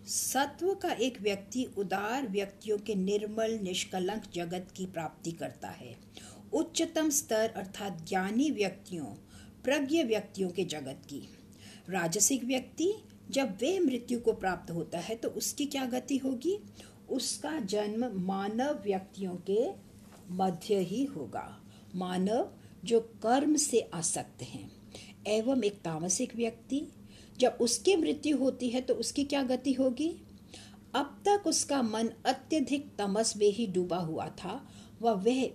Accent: Indian